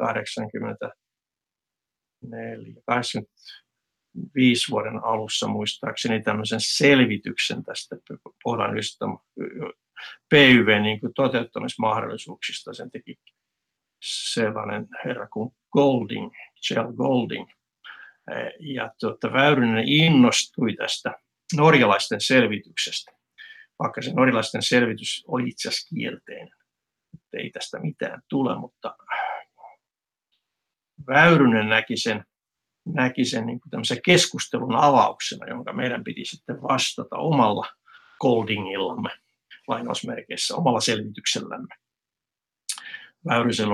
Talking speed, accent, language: 75 wpm, native, Finnish